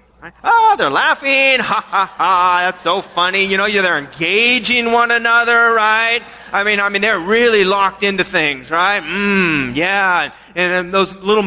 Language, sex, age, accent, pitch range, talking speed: English, male, 30-49, American, 180-235 Hz, 175 wpm